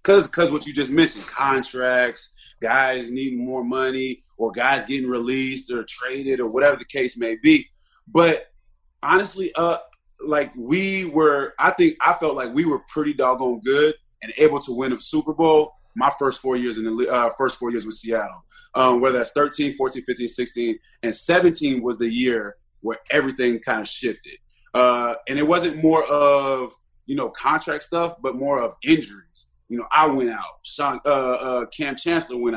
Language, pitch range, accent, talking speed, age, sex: English, 125-150 Hz, American, 185 wpm, 20-39, male